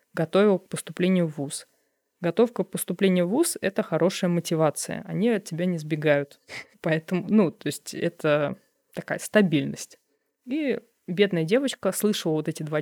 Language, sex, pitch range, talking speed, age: Russian, female, 165-200 Hz, 155 wpm, 20-39